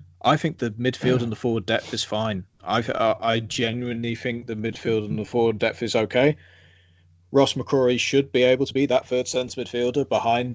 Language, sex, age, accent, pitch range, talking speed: English, male, 20-39, British, 105-125 Hz, 200 wpm